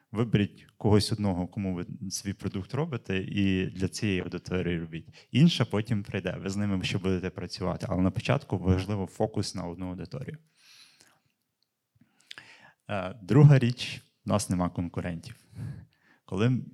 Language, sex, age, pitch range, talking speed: Ukrainian, male, 20-39, 90-120 Hz, 135 wpm